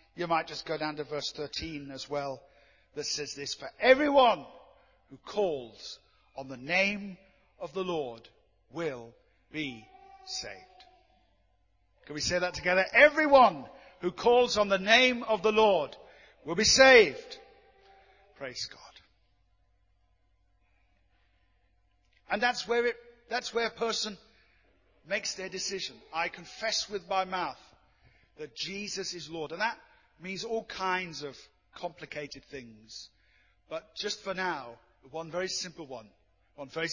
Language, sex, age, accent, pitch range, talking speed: English, male, 50-69, British, 130-195 Hz, 135 wpm